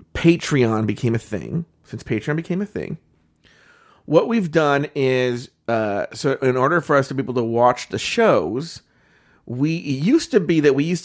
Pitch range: 130-185 Hz